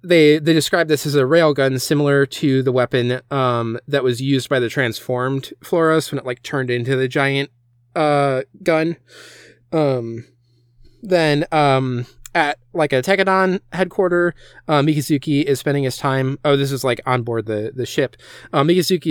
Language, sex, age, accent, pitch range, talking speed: English, male, 20-39, American, 125-150 Hz, 175 wpm